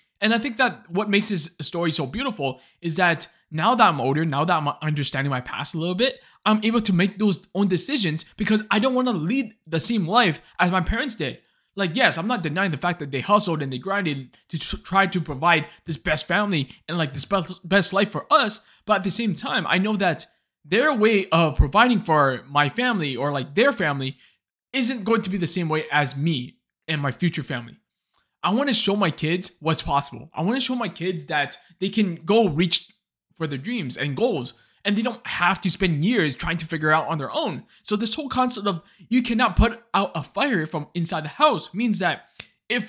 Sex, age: male, 20-39